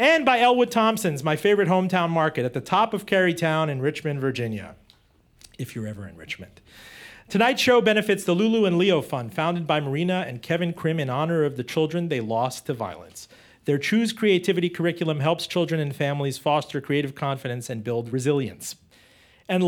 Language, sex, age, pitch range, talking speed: English, male, 40-59, 140-185 Hz, 180 wpm